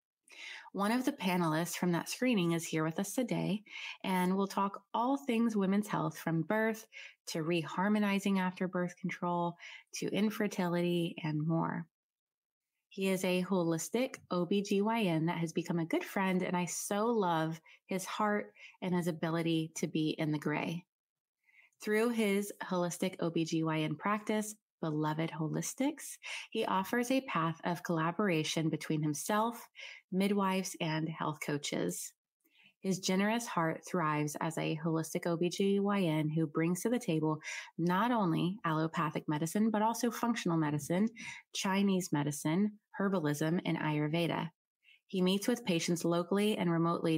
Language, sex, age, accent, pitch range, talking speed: English, female, 20-39, American, 160-205 Hz, 135 wpm